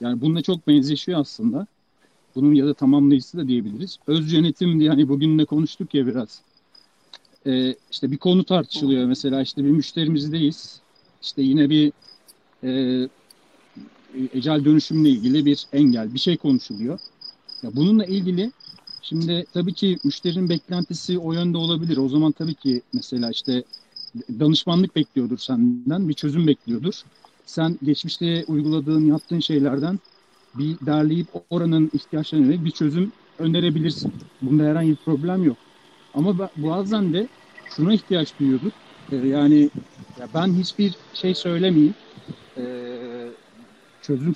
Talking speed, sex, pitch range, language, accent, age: 125 wpm, male, 140-185 Hz, Turkish, native, 50-69